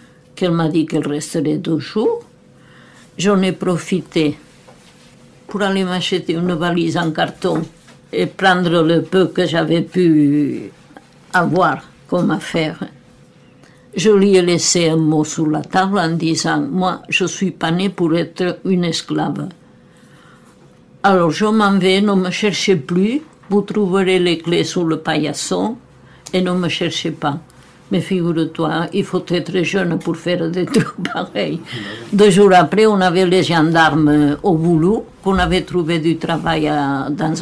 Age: 60-79